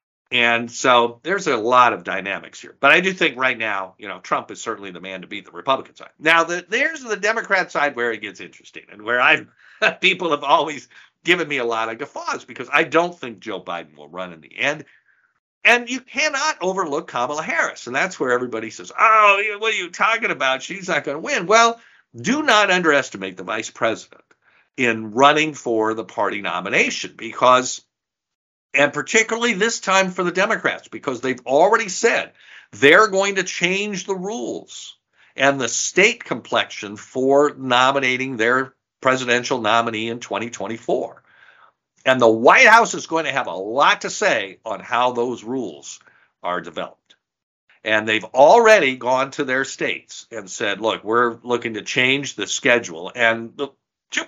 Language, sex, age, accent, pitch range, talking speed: English, male, 50-69, American, 115-185 Hz, 175 wpm